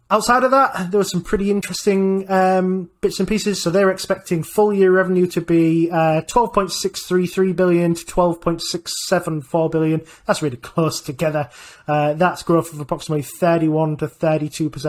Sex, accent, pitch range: male, British, 155-185 Hz